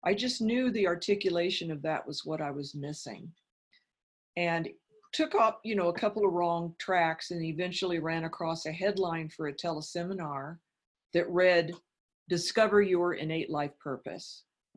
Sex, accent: female, American